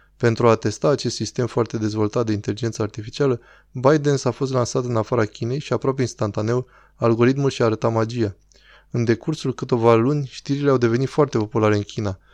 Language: Romanian